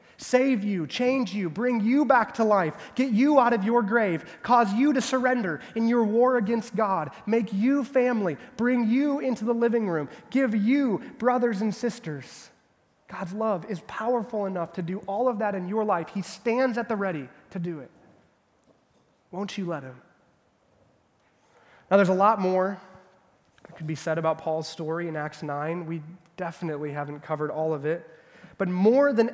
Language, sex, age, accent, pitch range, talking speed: English, male, 20-39, American, 170-240 Hz, 180 wpm